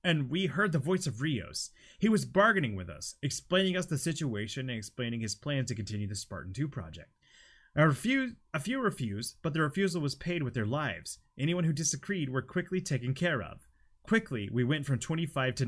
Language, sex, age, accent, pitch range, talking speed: English, male, 30-49, American, 115-165 Hz, 205 wpm